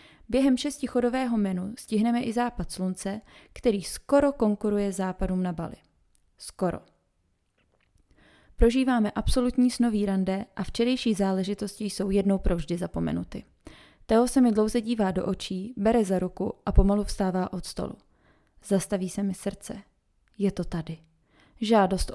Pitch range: 185-225 Hz